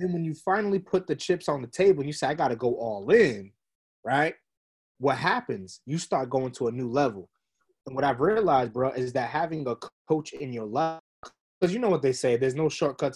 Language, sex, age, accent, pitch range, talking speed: English, male, 20-39, American, 130-185 Hz, 235 wpm